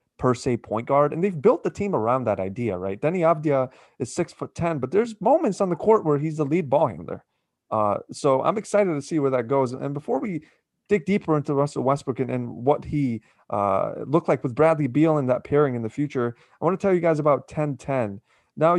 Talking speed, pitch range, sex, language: 235 wpm, 125-160 Hz, male, English